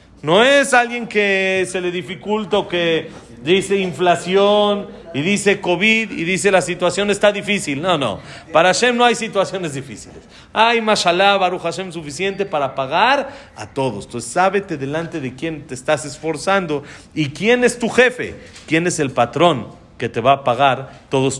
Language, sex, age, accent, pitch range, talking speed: Spanish, male, 40-59, Mexican, 145-200 Hz, 170 wpm